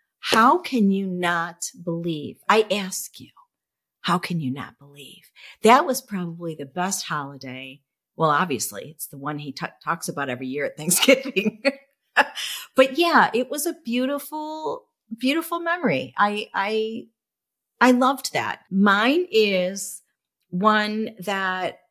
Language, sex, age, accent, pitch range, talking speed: English, female, 50-69, American, 160-205 Hz, 130 wpm